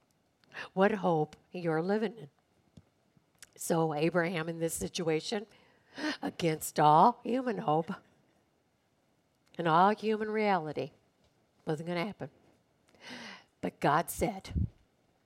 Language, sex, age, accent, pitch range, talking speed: English, female, 60-79, American, 165-220 Hz, 100 wpm